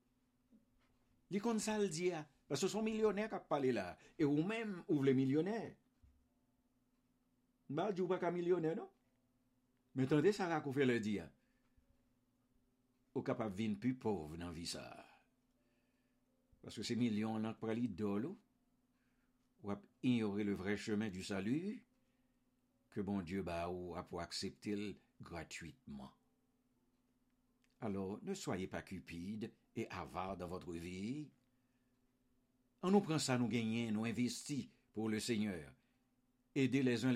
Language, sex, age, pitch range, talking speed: English, male, 60-79, 100-130 Hz, 130 wpm